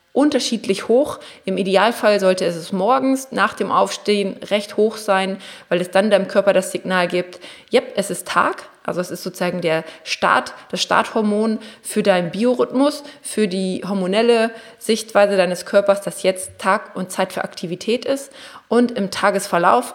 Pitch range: 185-225 Hz